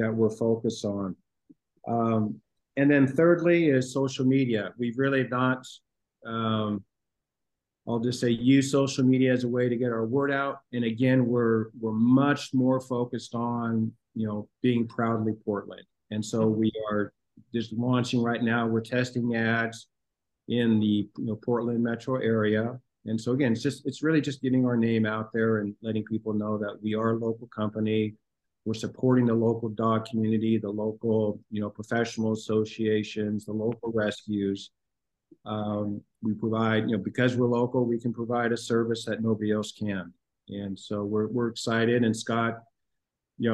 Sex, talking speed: male, 165 wpm